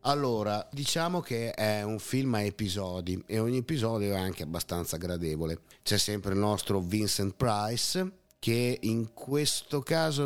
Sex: male